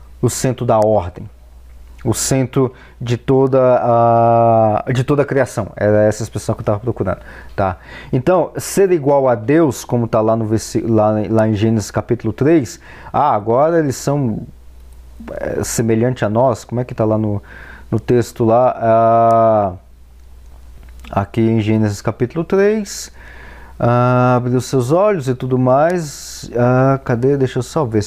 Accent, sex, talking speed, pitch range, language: Brazilian, male, 155 wpm, 110-170 Hz, Portuguese